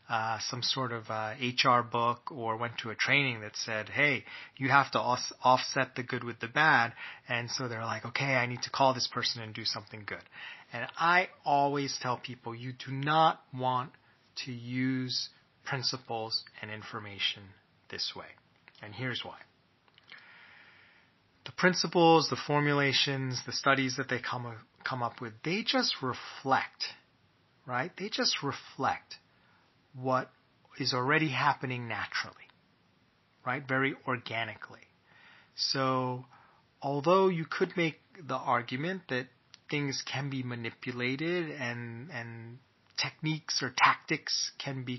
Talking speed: 140 wpm